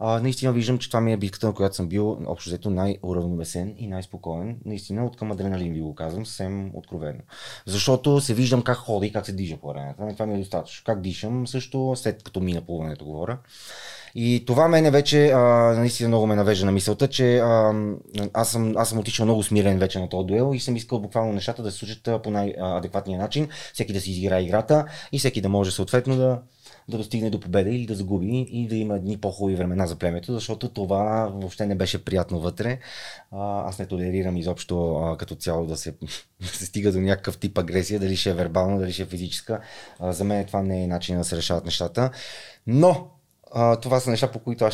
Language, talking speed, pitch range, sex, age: Bulgarian, 210 wpm, 95-115 Hz, male, 20-39